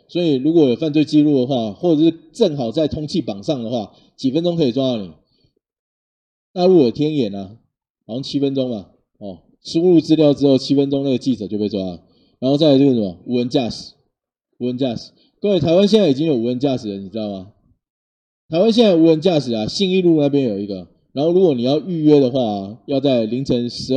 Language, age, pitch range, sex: Chinese, 20-39, 110-155 Hz, male